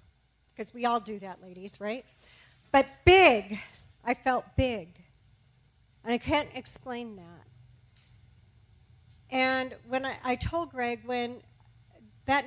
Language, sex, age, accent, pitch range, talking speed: English, female, 40-59, American, 205-260 Hz, 120 wpm